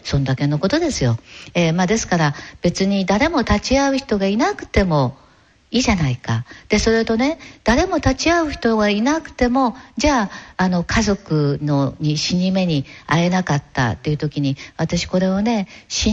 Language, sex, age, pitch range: Japanese, female, 60-79, 170-245 Hz